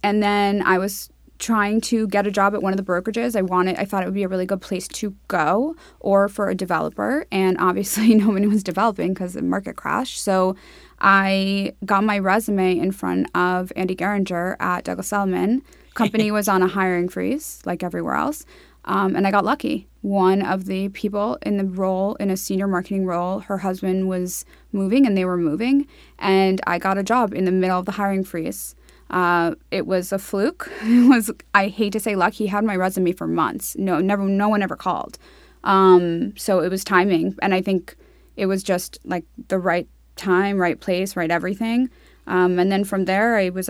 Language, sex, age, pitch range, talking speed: English, female, 20-39, 185-205 Hz, 205 wpm